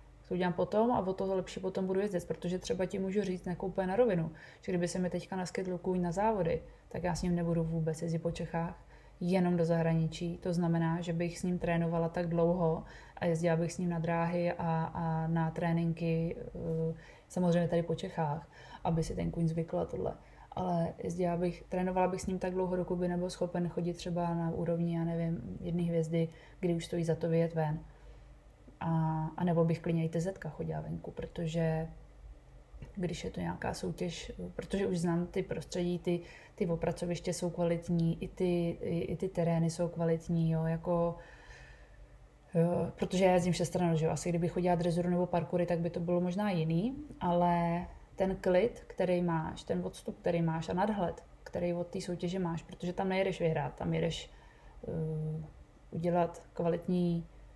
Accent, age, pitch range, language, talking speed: native, 20-39, 165-180 Hz, Czech, 180 wpm